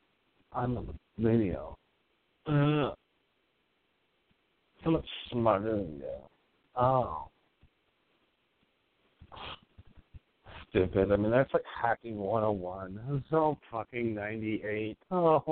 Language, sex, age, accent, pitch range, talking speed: English, male, 50-69, American, 105-145 Hz, 90 wpm